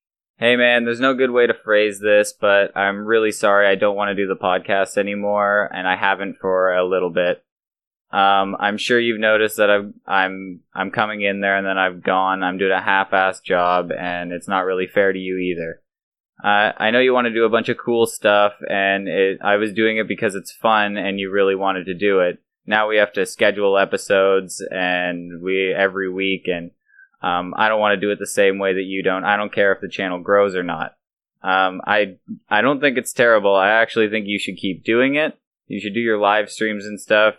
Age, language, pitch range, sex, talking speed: 20-39, English, 95-105 Hz, male, 230 wpm